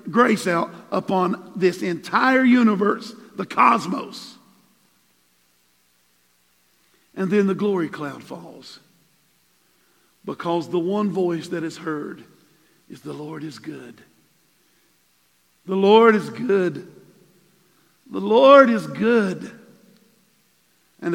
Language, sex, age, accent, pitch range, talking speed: English, male, 50-69, American, 170-215 Hz, 100 wpm